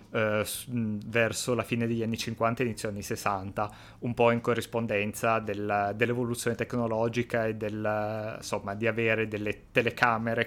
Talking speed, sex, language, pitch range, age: 145 wpm, male, Italian, 110-130 Hz, 20-39